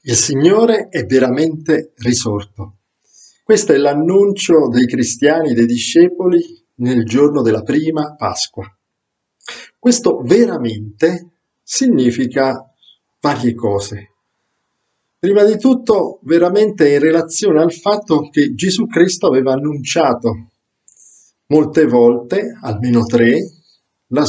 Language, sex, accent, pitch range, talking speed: Italian, male, native, 115-185 Hz, 100 wpm